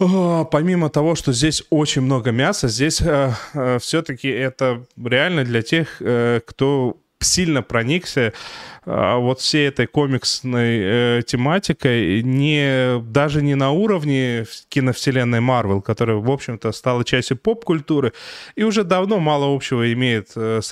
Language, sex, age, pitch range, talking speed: Russian, male, 20-39, 115-145 Hz, 135 wpm